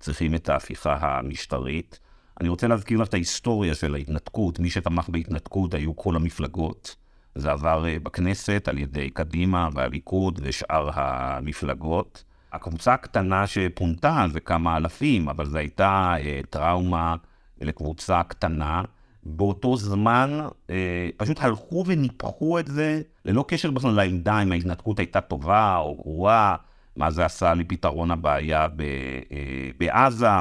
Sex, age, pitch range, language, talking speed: male, 50-69, 80-105 Hz, Hebrew, 125 wpm